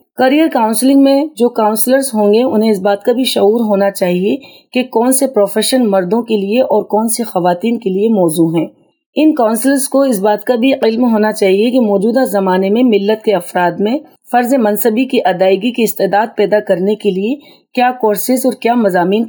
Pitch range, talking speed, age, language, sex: 200-250 Hz, 195 wpm, 30-49, Urdu, female